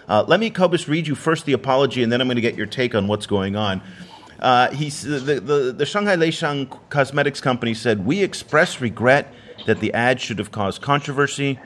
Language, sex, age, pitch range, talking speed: English, male, 30-49, 105-150 Hz, 205 wpm